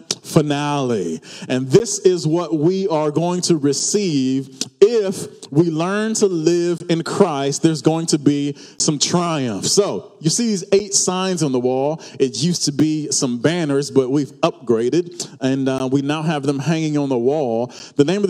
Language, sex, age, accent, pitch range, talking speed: English, male, 30-49, American, 150-200 Hz, 175 wpm